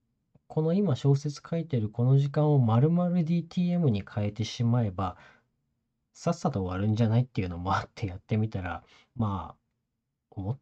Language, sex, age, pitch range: Japanese, male, 40-59, 100-135 Hz